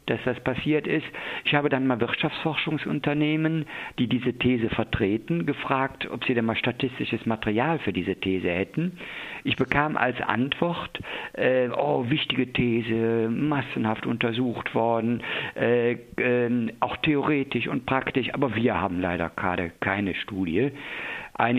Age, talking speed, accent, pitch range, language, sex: 50-69, 135 wpm, German, 110-135 Hz, German, male